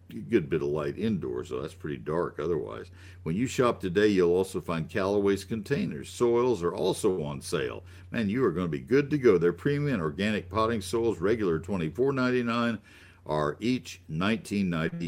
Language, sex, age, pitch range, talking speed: English, male, 60-79, 85-110 Hz, 165 wpm